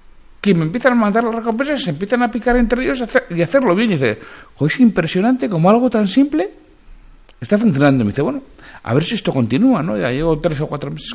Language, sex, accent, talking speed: Spanish, male, Spanish, 225 wpm